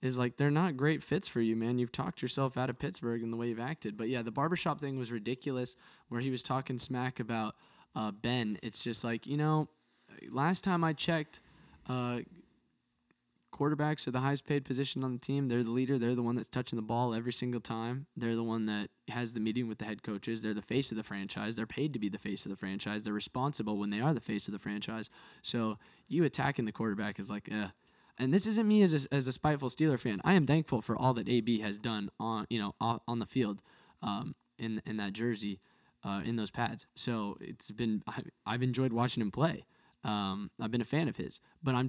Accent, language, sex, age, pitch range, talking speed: American, English, male, 10-29, 110-140 Hz, 235 wpm